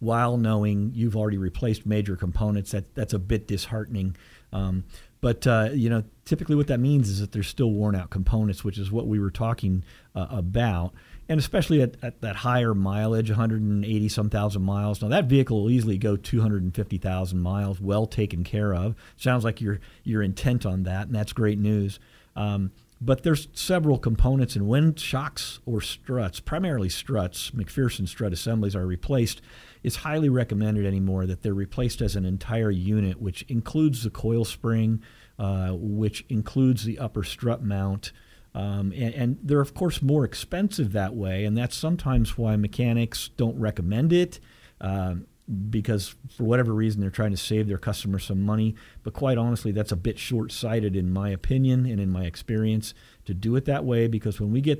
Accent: American